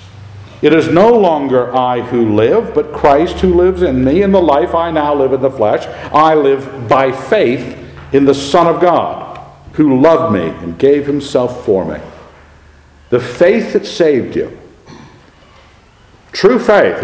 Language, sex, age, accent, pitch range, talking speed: English, male, 60-79, American, 110-165 Hz, 160 wpm